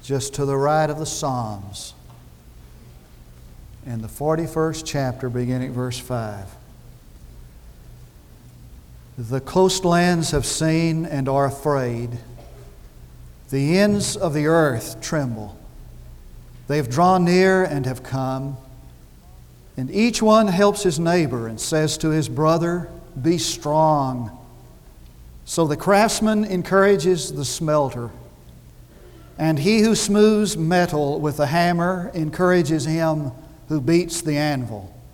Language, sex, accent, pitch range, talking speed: English, male, American, 120-180 Hz, 115 wpm